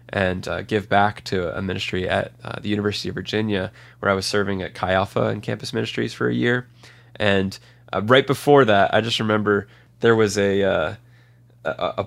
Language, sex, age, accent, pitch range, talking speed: English, male, 20-39, American, 100-115 Hz, 195 wpm